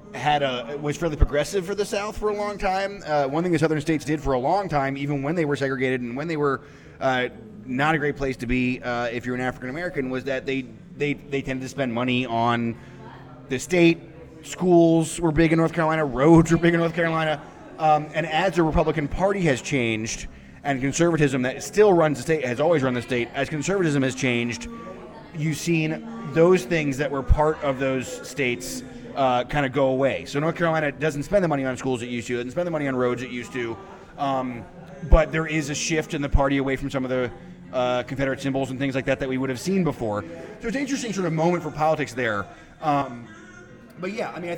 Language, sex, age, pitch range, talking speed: English, male, 20-39, 130-165 Hz, 230 wpm